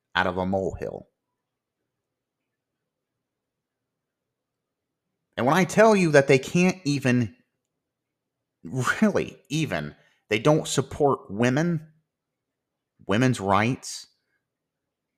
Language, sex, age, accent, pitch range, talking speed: English, male, 30-49, American, 110-135 Hz, 85 wpm